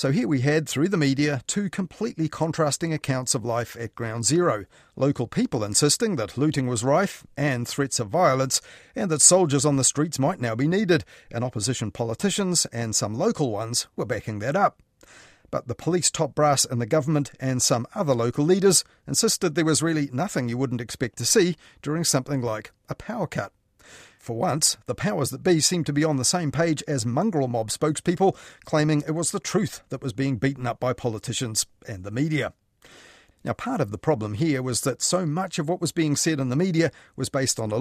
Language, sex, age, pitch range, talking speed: English, male, 40-59, 125-160 Hz, 210 wpm